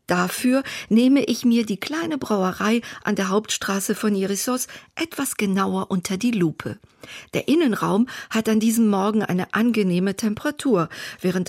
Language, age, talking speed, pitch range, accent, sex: German, 50-69, 140 wpm, 185-230 Hz, German, female